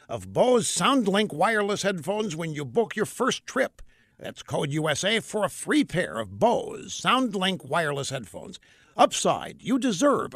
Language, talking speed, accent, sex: English, 150 wpm, American, male